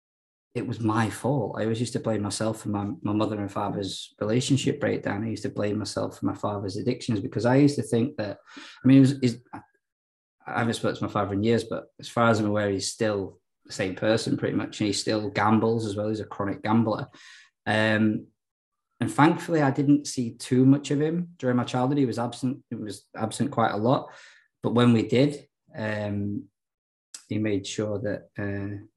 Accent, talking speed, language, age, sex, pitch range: British, 205 wpm, English, 20-39, male, 105-135 Hz